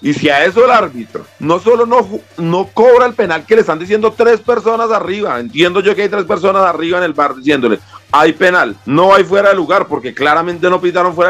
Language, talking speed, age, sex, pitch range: Spanish, 230 wpm, 40-59, male, 150-205 Hz